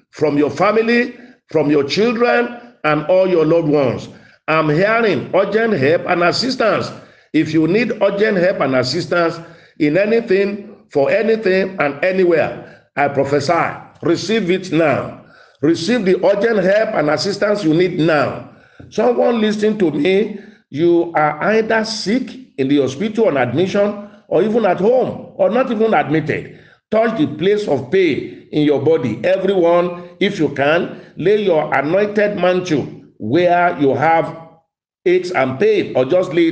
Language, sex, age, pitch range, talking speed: English, male, 50-69, 155-215 Hz, 150 wpm